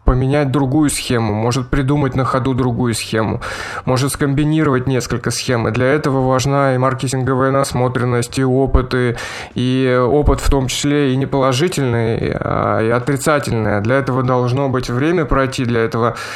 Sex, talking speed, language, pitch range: male, 155 wpm, Russian, 115-135 Hz